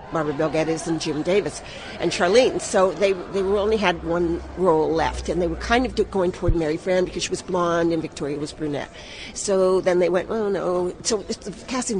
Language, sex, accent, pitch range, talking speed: English, female, American, 160-200 Hz, 205 wpm